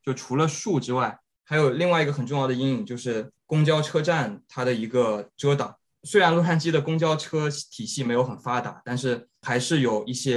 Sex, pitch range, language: male, 115-135 Hz, Chinese